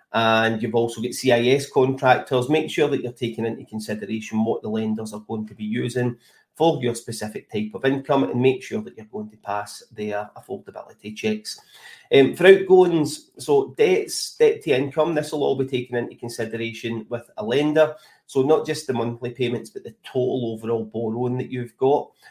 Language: English